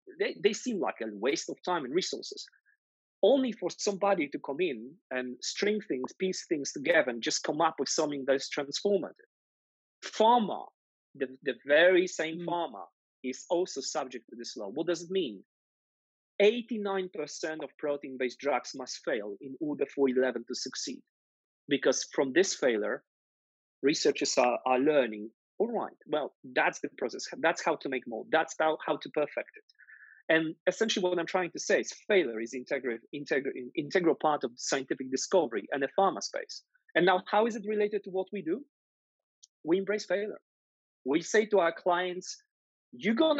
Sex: male